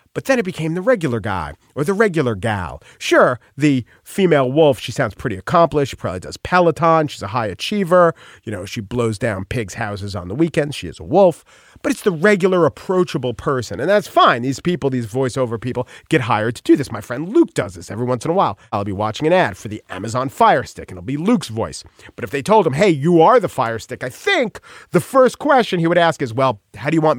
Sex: male